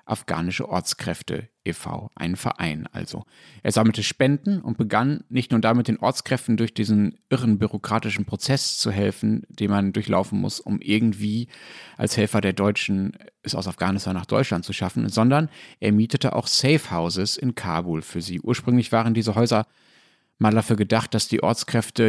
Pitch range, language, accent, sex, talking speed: 100-115 Hz, German, German, male, 165 wpm